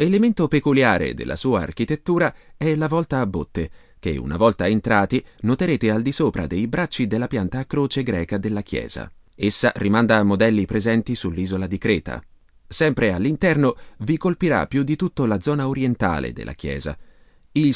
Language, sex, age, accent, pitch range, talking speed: Italian, male, 30-49, native, 95-145 Hz, 160 wpm